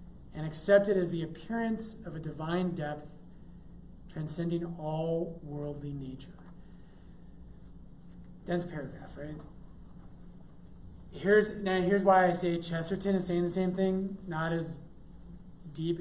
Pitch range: 155-185 Hz